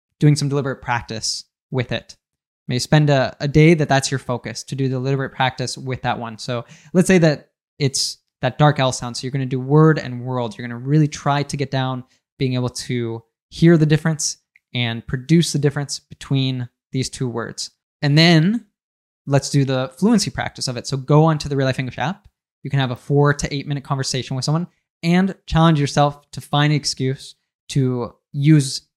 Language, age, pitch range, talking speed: English, 20-39, 125-150 Hz, 205 wpm